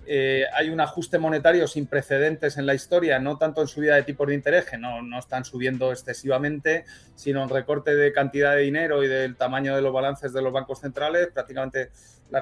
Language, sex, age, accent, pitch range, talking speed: Spanish, male, 30-49, Spanish, 130-155 Hz, 210 wpm